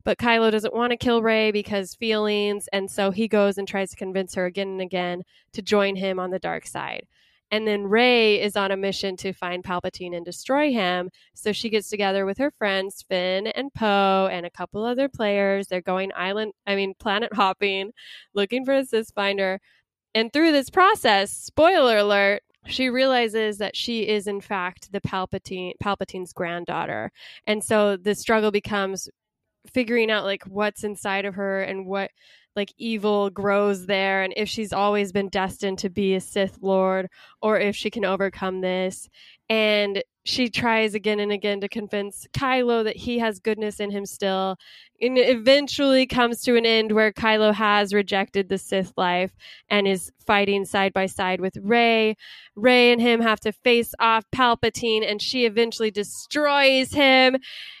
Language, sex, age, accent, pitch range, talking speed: English, female, 20-39, American, 195-225 Hz, 175 wpm